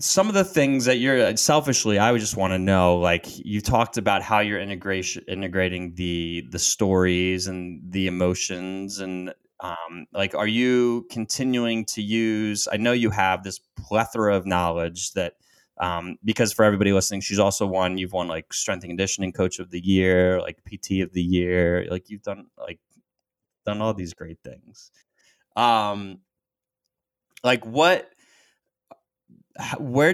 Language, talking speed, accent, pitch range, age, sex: English, 160 wpm, American, 90-110 Hz, 20-39, male